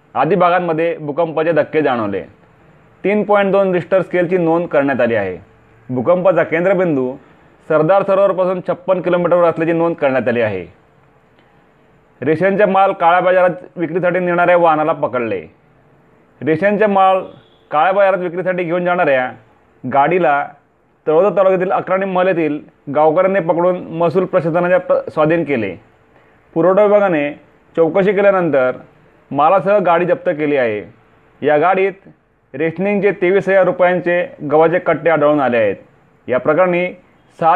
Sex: male